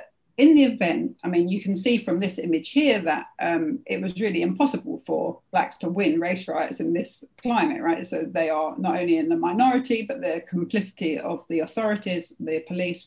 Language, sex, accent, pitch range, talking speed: English, female, British, 175-280 Hz, 200 wpm